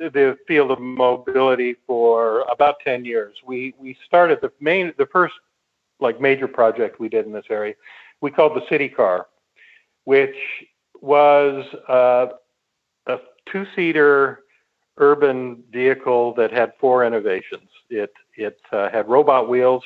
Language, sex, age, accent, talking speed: English, male, 50-69, American, 140 wpm